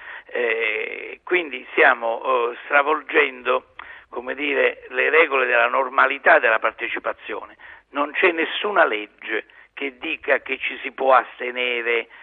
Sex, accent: male, native